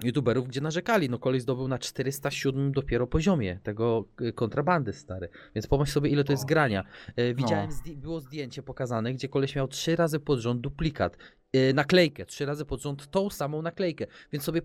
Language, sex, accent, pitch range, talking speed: Polish, male, native, 130-170 Hz, 170 wpm